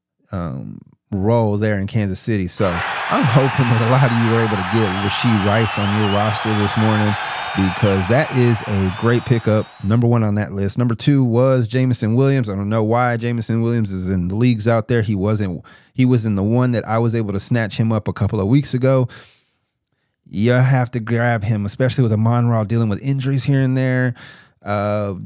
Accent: American